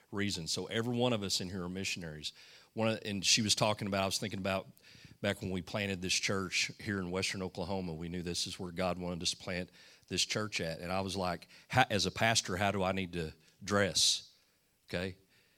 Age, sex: 40-59, male